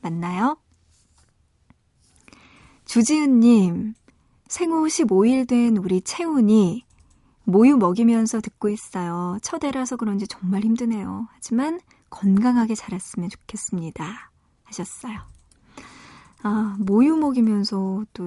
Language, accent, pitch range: Korean, native, 195-240 Hz